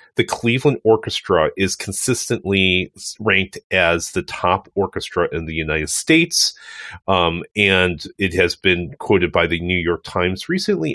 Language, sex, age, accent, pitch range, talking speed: English, male, 40-59, American, 90-110 Hz, 145 wpm